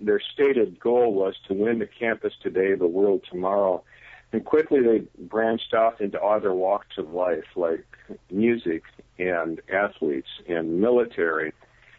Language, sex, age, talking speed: English, male, 50-69, 140 wpm